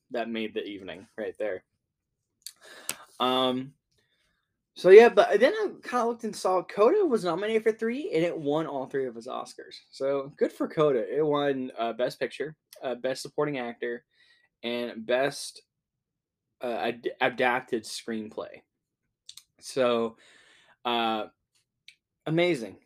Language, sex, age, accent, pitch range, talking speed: English, male, 10-29, American, 120-155 Hz, 135 wpm